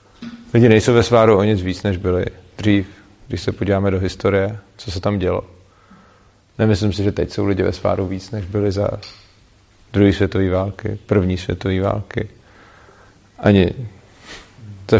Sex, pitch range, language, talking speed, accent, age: male, 95-110 Hz, Czech, 155 wpm, native, 40-59